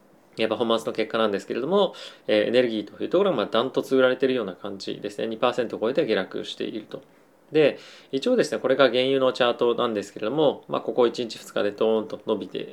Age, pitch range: 20-39, 105-135 Hz